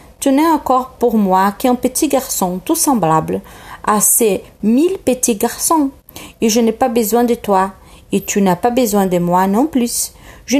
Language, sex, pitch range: French, female, 175-250 Hz